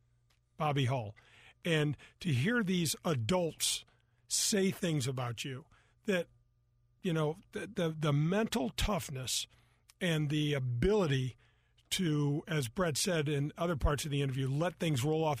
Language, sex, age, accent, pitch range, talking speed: English, male, 50-69, American, 120-155 Hz, 140 wpm